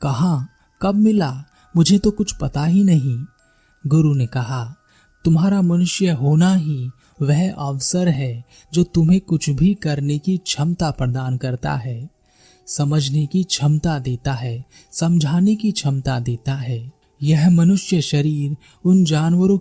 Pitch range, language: 135-175 Hz, Hindi